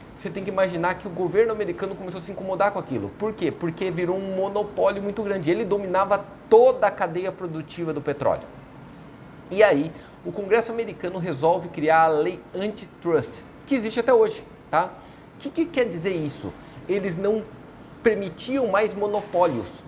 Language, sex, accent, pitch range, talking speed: Portuguese, male, Brazilian, 165-215 Hz, 170 wpm